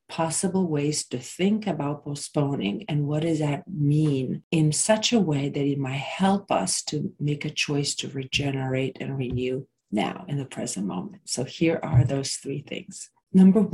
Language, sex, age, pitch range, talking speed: English, female, 40-59, 145-185 Hz, 175 wpm